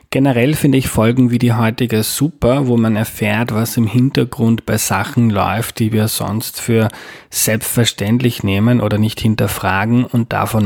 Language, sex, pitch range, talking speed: German, male, 105-125 Hz, 160 wpm